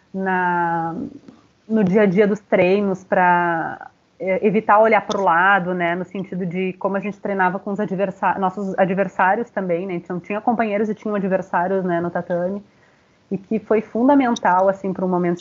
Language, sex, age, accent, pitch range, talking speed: Portuguese, female, 30-49, Brazilian, 185-225 Hz, 185 wpm